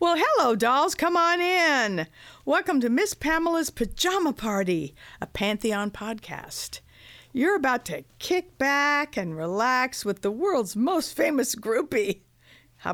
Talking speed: 135 wpm